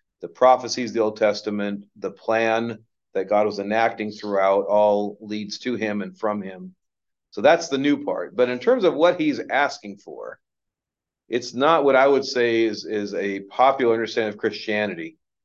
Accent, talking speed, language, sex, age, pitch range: American, 180 wpm, English, male, 40-59, 105-150 Hz